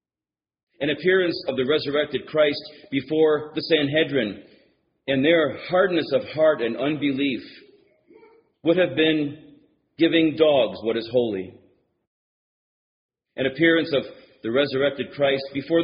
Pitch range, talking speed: 130-165 Hz, 115 wpm